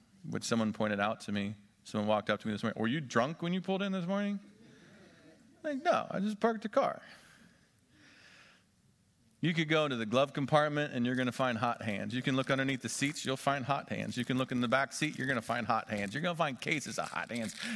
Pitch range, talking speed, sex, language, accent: 125-200 Hz, 255 wpm, male, English, American